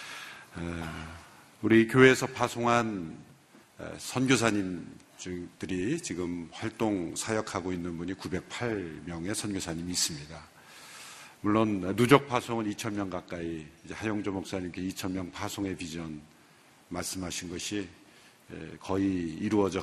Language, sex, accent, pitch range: Korean, male, native, 85-105 Hz